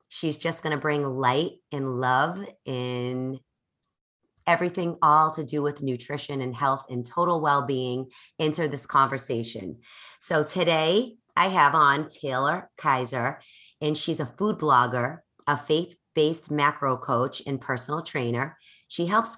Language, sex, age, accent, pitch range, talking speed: English, female, 30-49, American, 130-170 Hz, 135 wpm